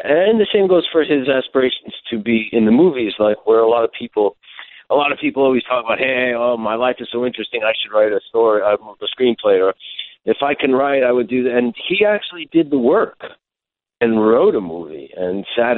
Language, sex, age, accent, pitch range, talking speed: English, male, 50-69, American, 105-140 Hz, 230 wpm